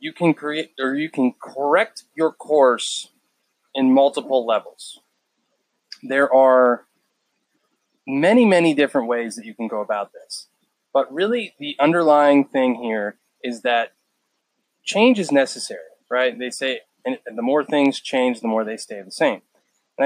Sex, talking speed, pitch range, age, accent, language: male, 150 wpm, 120-160 Hz, 20-39, American, English